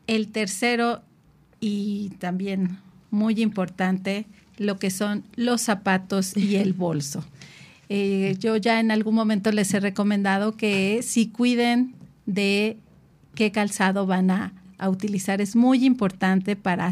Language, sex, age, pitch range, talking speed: Spanish, female, 40-59, 190-220 Hz, 130 wpm